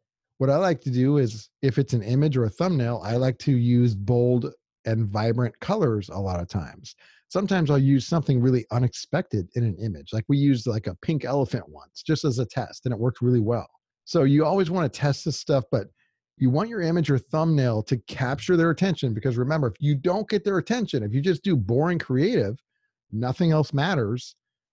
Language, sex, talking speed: English, male, 210 wpm